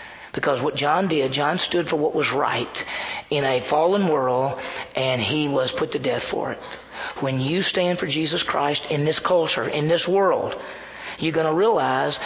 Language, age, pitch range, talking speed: English, 40-59, 150-195 Hz, 185 wpm